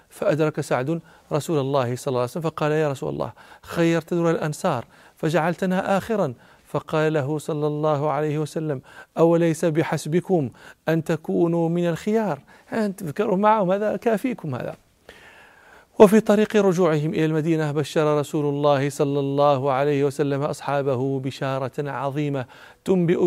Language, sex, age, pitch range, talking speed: Arabic, male, 40-59, 140-175 Hz, 130 wpm